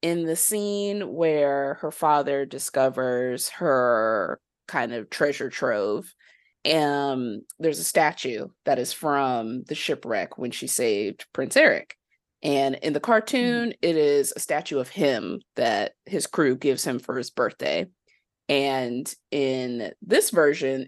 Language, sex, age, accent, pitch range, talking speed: English, female, 30-49, American, 135-180 Hz, 140 wpm